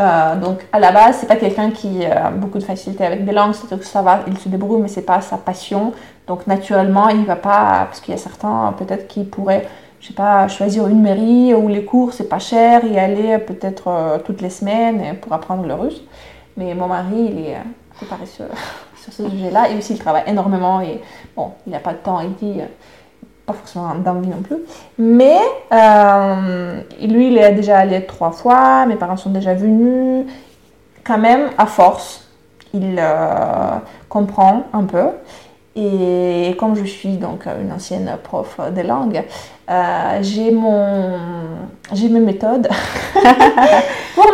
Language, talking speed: French, 185 wpm